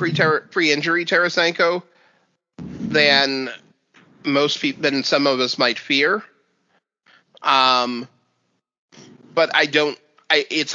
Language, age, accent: English, 30-49, American